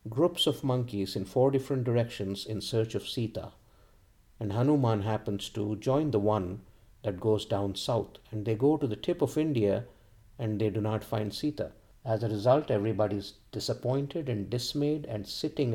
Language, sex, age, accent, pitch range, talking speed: English, male, 50-69, Indian, 105-130 Hz, 170 wpm